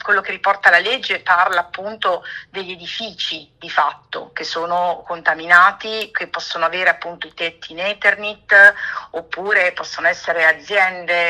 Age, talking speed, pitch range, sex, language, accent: 50-69, 140 wpm, 170-200 Hz, female, Italian, native